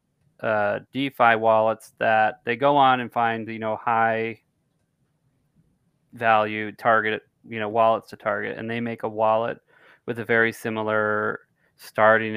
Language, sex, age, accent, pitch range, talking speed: English, male, 30-49, American, 110-120 Hz, 140 wpm